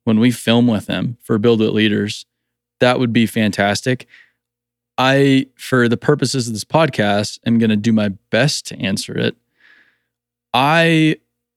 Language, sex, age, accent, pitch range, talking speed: English, male, 20-39, American, 115-135 Hz, 155 wpm